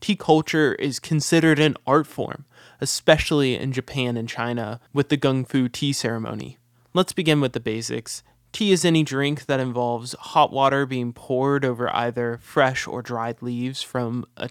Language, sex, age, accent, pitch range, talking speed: English, male, 20-39, American, 120-145 Hz, 170 wpm